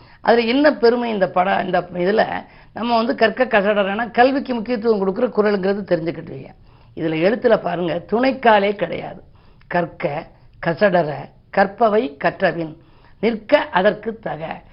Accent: native